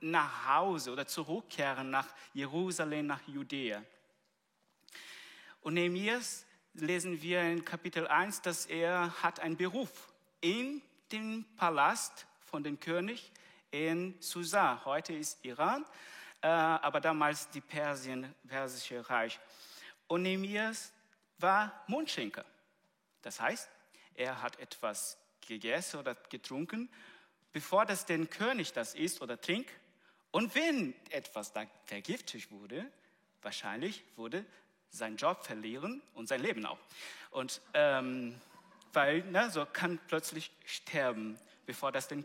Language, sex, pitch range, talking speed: German, male, 145-200 Hz, 115 wpm